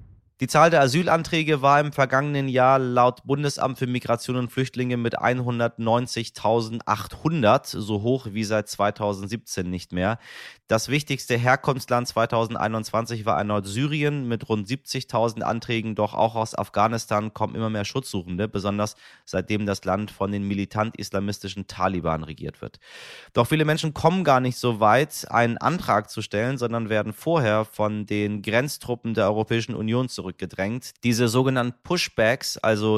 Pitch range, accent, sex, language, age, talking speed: 105-130 Hz, German, male, German, 30-49, 140 wpm